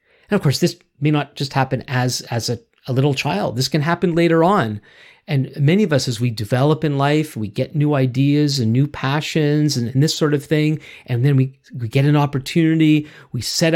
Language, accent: English, American